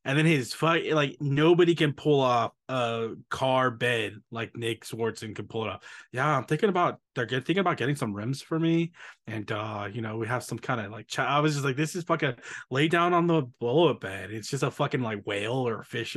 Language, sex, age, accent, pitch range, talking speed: English, male, 20-39, American, 120-155 Hz, 235 wpm